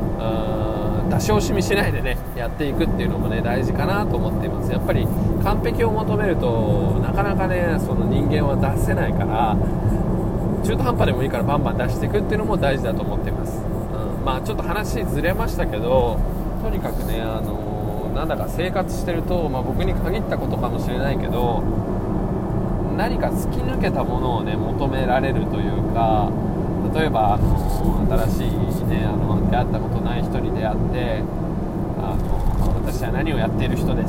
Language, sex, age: Japanese, male, 20-39